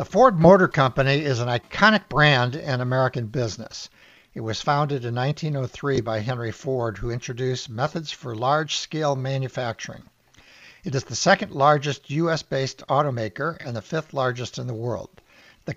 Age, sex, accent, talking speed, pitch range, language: 60-79, male, American, 145 wpm, 125-150 Hz, English